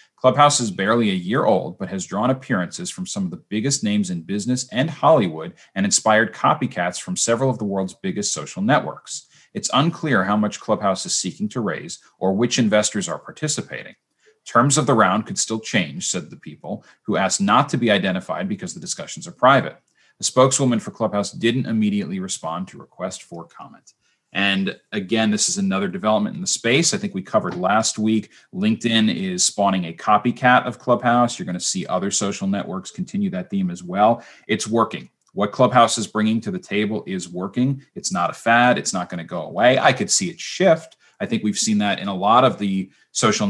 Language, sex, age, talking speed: English, male, 30-49, 205 wpm